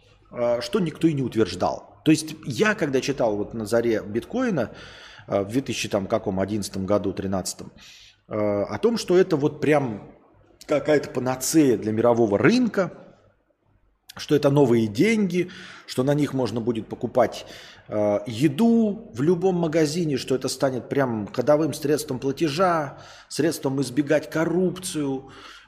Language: Russian